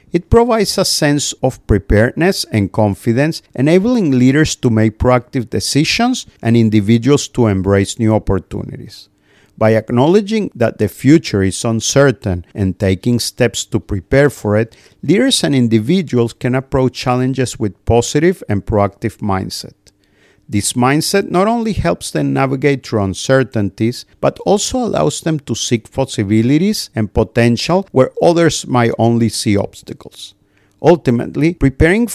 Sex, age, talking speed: male, 50-69, 135 wpm